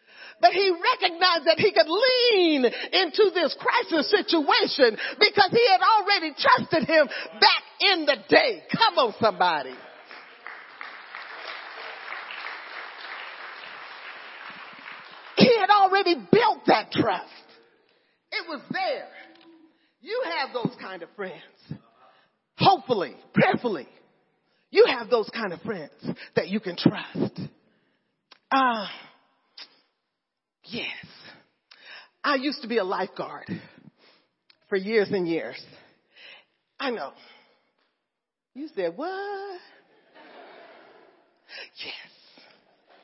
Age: 40-59